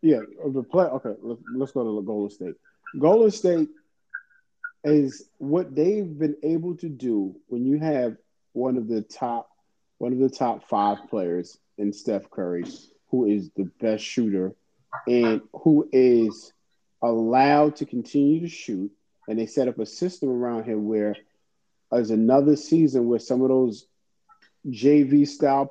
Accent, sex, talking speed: American, male, 155 wpm